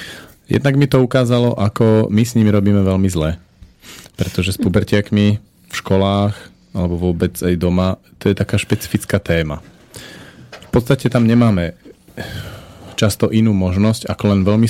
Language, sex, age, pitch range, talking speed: Slovak, male, 40-59, 90-110 Hz, 145 wpm